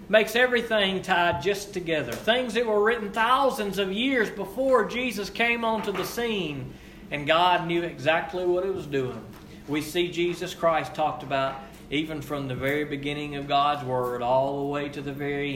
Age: 40-59